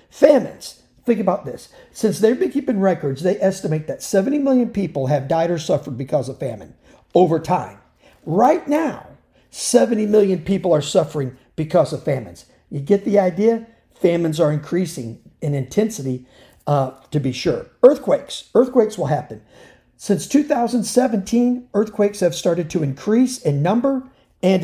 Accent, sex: American, male